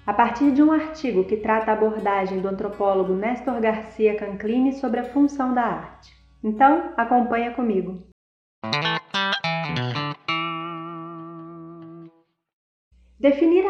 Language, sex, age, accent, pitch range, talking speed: Portuguese, female, 30-49, Brazilian, 200-285 Hz, 100 wpm